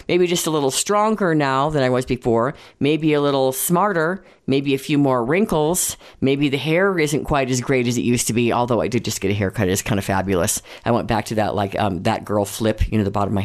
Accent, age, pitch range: American, 40-59, 115-170 Hz